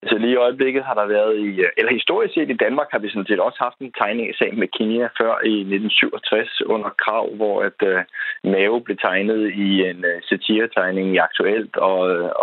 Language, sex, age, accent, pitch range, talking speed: Danish, male, 20-39, native, 90-115 Hz, 200 wpm